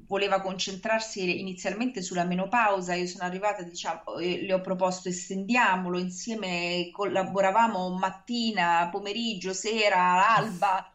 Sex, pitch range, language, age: female, 175-215 Hz, Italian, 30-49